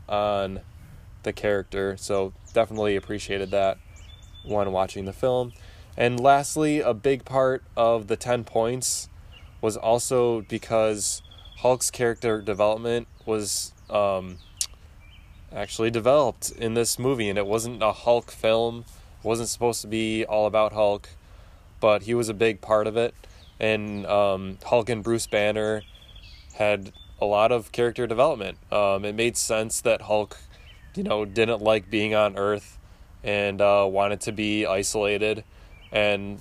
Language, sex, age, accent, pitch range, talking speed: English, male, 20-39, American, 95-115 Hz, 145 wpm